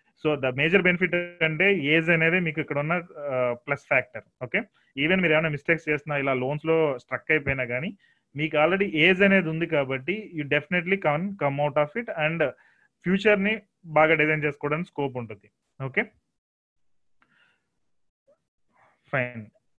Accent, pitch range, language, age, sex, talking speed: native, 135-175 Hz, Telugu, 30-49, male, 135 wpm